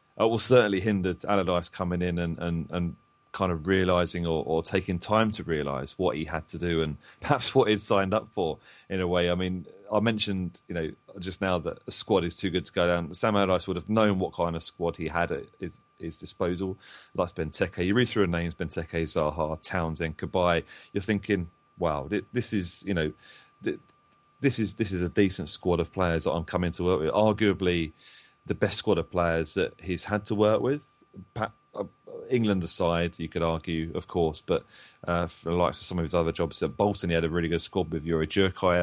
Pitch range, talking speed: 85-105 Hz, 215 wpm